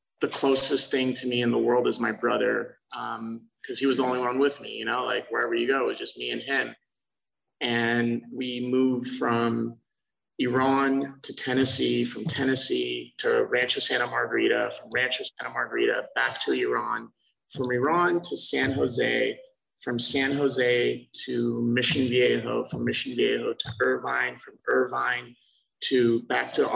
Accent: American